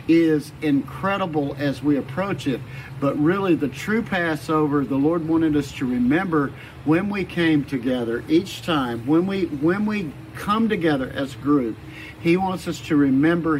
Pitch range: 135-180 Hz